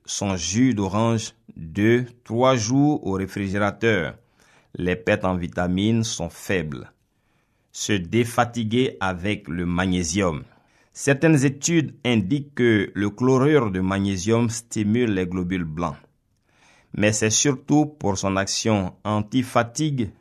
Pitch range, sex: 95-120 Hz, male